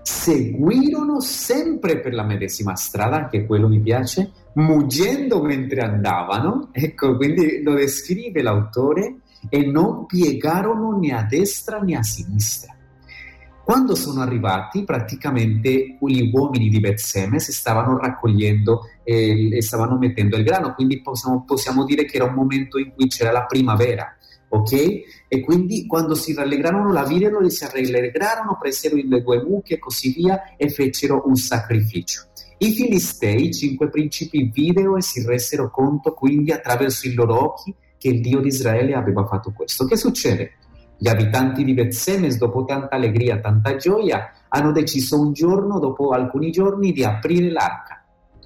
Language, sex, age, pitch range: Italian, male, 40-59, 115-155 Hz